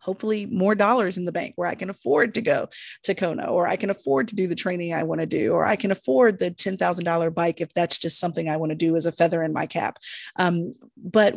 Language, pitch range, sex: English, 165-210 Hz, female